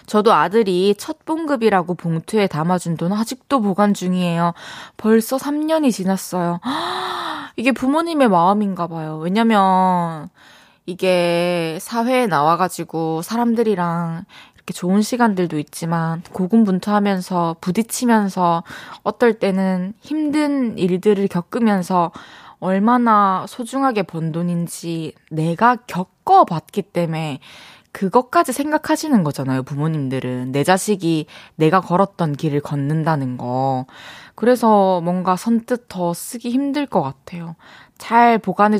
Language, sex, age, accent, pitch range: Korean, female, 20-39, native, 165-225 Hz